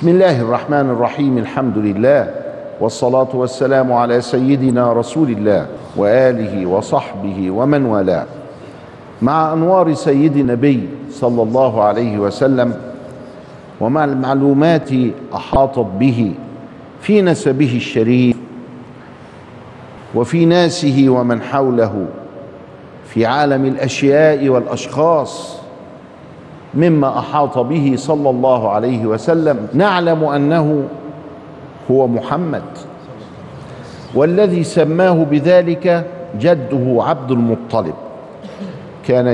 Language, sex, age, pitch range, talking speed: Arabic, male, 50-69, 120-155 Hz, 85 wpm